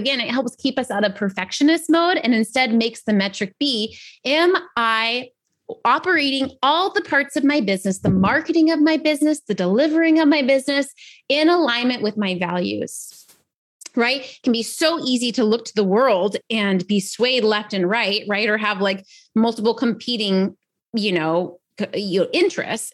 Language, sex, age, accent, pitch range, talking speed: English, female, 30-49, American, 195-255 Hz, 170 wpm